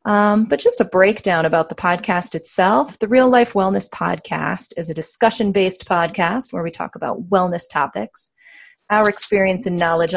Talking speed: 165 wpm